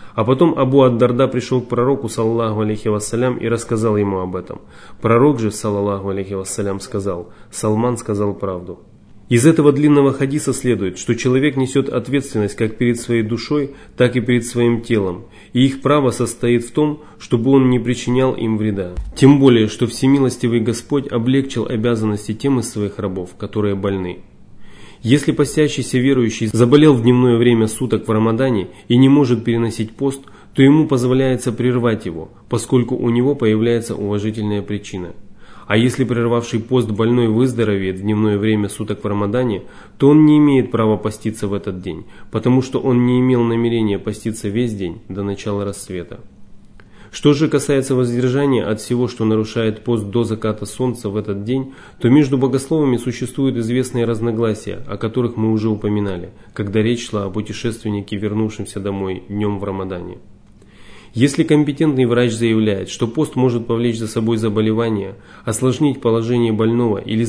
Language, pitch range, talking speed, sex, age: Russian, 105-125 Hz, 160 wpm, male, 30-49